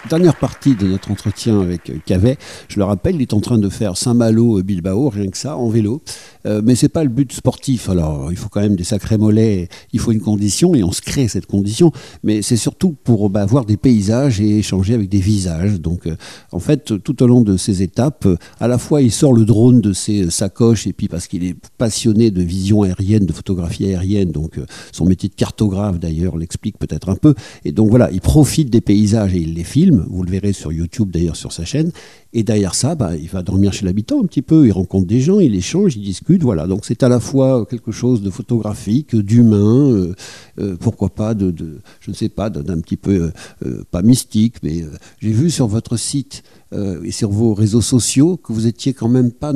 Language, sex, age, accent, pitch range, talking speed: French, male, 50-69, French, 95-125 Hz, 225 wpm